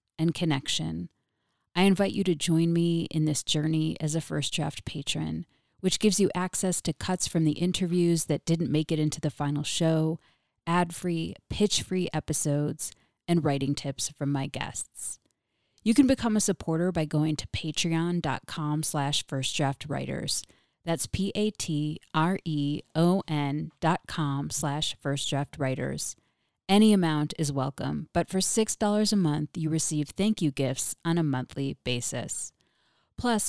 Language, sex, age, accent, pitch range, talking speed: English, female, 30-49, American, 145-175 Hz, 140 wpm